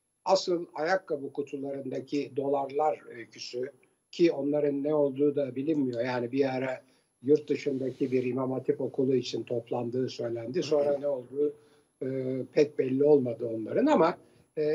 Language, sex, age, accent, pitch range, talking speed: Turkish, male, 60-79, native, 140-220 Hz, 135 wpm